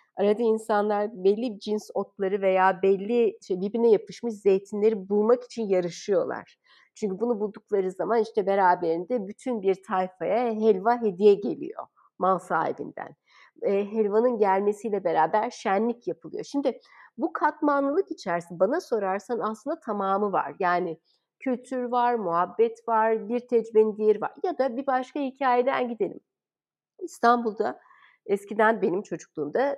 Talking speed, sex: 125 wpm, female